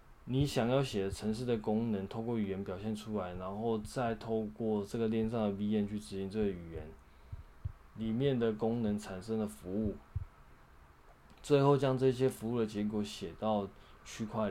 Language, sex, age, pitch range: Chinese, male, 20-39, 80-125 Hz